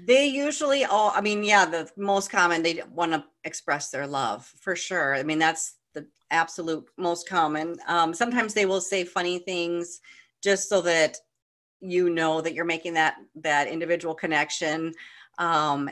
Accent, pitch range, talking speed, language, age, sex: American, 170-210 Hz, 165 wpm, English, 40-59, female